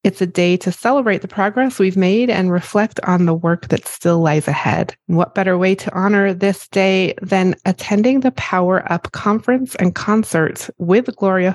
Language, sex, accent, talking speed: English, female, American, 180 wpm